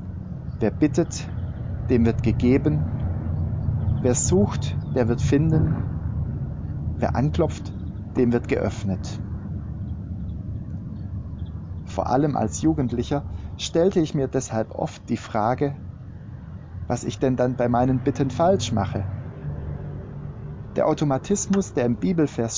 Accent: German